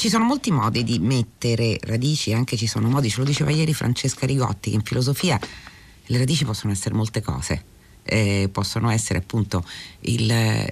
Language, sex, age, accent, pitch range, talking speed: Italian, female, 40-59, native, 105-145 Hz, 175 wpm